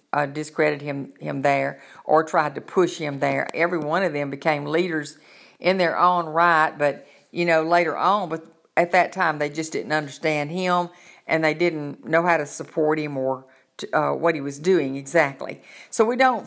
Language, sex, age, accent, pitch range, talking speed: English, female, 50-69, American, 150-175 Hz, 195 wpm